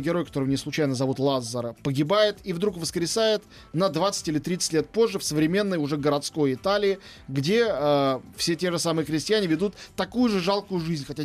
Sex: male